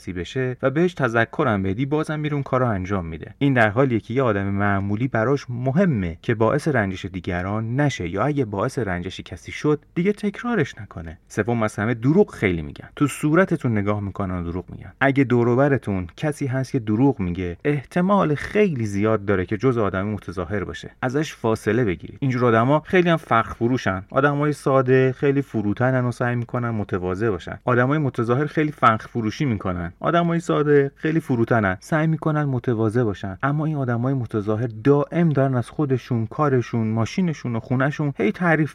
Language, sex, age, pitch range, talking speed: Persian, male, 30-49, 105-140 Hz, 165 wpm